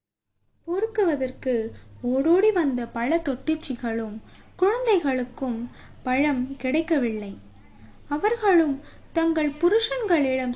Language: Tamil